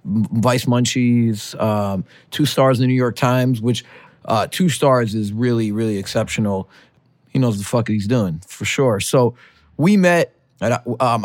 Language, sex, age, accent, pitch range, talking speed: English, male, 30-49, American, 115-145 Hz, 170 wpm